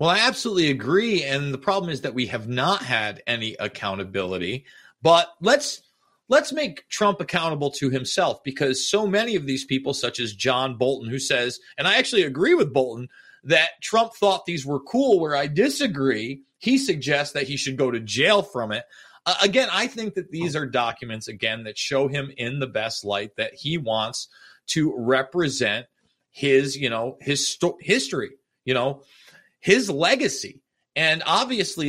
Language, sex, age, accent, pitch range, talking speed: English, male, 30-49, American, 130-175 Hz, 175 wpm